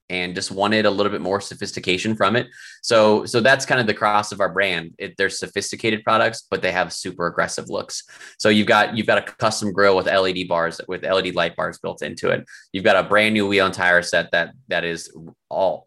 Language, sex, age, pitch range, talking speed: English, male, 20-39, 85-105 Hz, 230 wpm